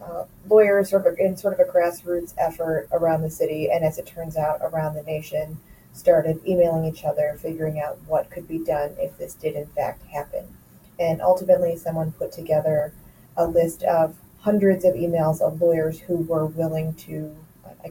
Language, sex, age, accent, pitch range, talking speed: English, female, 30-49, American, 155-180 Hz, 180 wpm